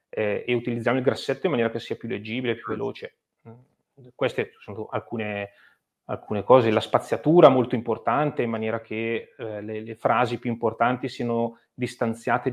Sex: male